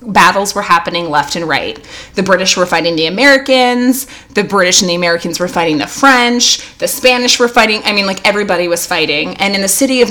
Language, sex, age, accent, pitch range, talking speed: English, female, 20-39, American, 175-235 Hz, 215 wpm